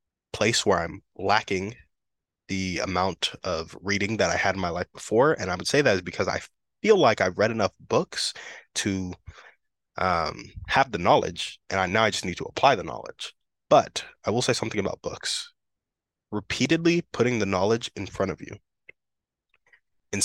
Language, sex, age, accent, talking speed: English, male, 20-39, American, 180 wpm